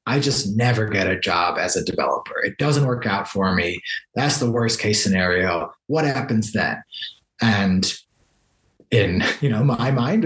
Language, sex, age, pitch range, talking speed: English, male, 20-39, 110-145 Hz, 170 wpm